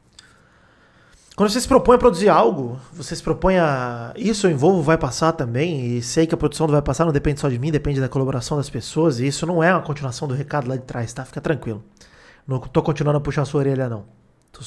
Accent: Brazilian